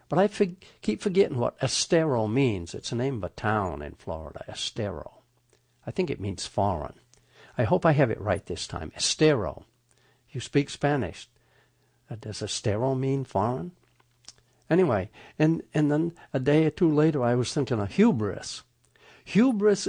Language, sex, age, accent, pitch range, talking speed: English, male, 60-79, American, 100-140 Hz, 165 wpm